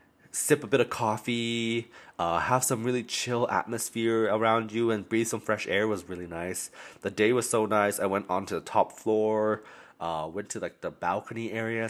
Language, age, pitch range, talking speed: English, 20-39, 100-130 Hz, 195 wpm